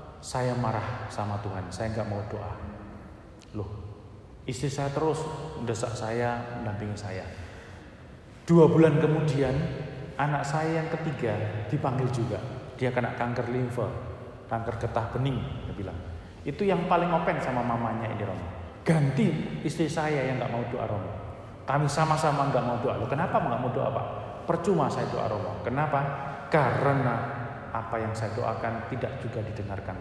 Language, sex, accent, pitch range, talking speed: Indonesian, male, native, 105-140 Hz, 150 wpm